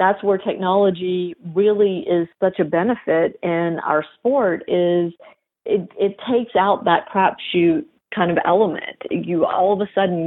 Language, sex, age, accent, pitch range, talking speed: English, female, 40-59, American, 170-215 Hz, 150 wpm